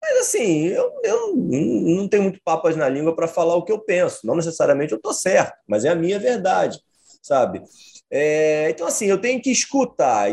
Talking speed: 200 wpm